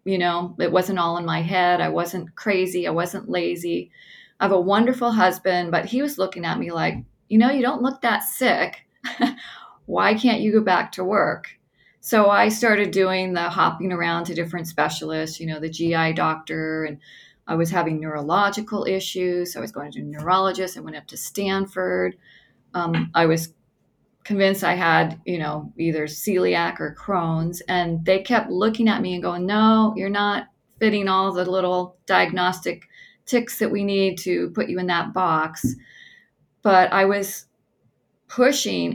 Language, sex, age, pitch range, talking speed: English, female, 40-59, 165-200 Hz, 175 wpm